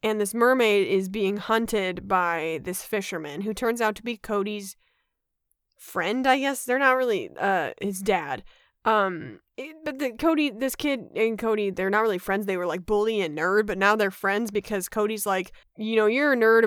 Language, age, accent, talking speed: English, 20-39, American, 200 wpm